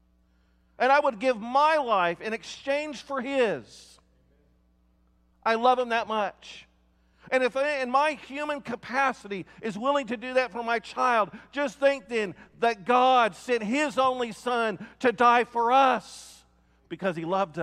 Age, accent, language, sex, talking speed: 50-69, American, English, male, 155 wpm